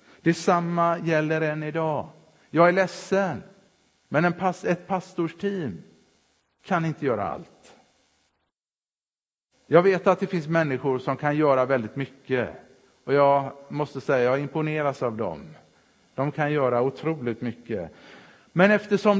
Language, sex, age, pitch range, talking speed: Swedish, male, 50-69, 140-190 Hz, 130 wpm